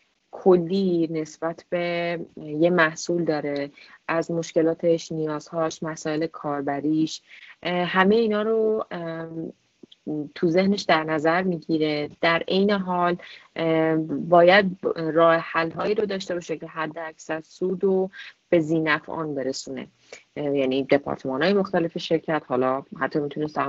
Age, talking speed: 30-49, 110 wpm